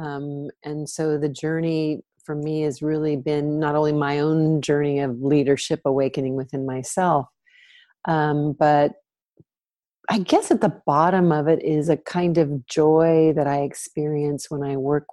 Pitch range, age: 145-175 Hz, 40-59